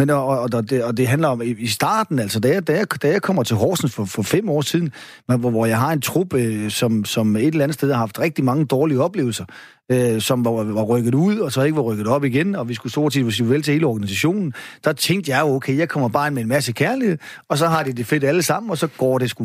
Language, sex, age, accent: Danish, male, 30-49, native